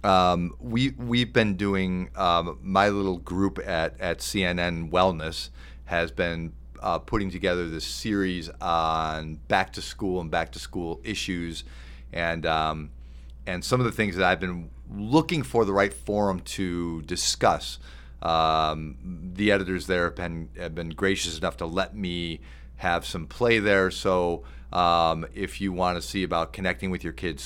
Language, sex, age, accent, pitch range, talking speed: English, male, 40-59, American, 75-95 Hz, 165 wpm